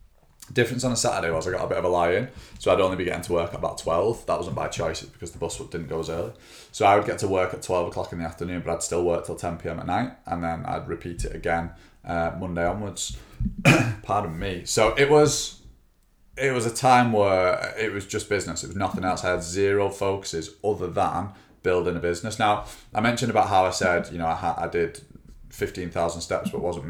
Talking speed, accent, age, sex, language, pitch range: 245 wpm, British, 20-39, male, English, 85-105 Hz